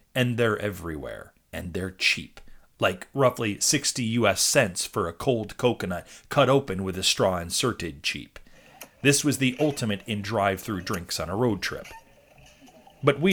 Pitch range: 100-145 Hz